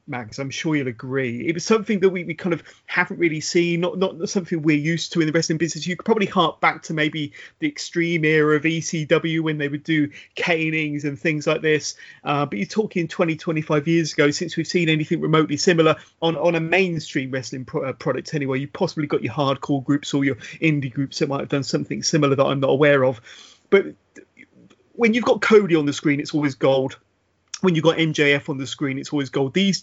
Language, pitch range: English, 140-170 Hz